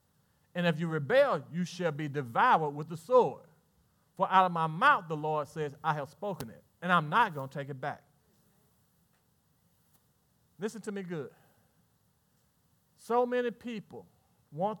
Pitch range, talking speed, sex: 155-230 Hz, 160 wpm, male